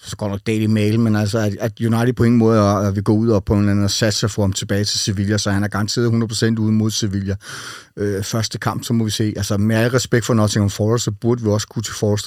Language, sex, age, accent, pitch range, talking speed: Danish, male, 30-49, native, 110-130 Hz, 265 wpm